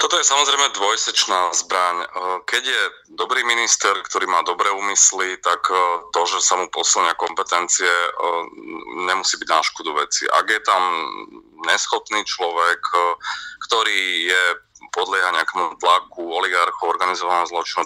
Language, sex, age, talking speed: Slovak, male, 30-49, 125 wpm